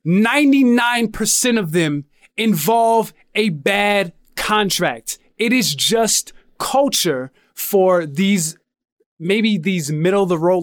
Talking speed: 90 wpm